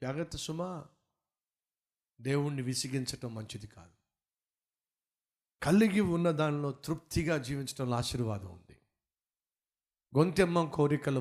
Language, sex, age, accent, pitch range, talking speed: Telugu, male, 50-69, native, 120-165 Hz, 80 wpm